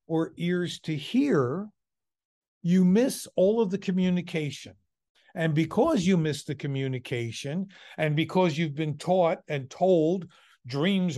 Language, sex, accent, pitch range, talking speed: English, male, American, 150-190 Hz, 130 wpm